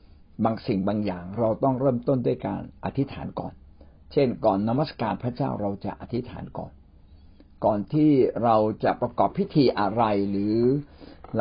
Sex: male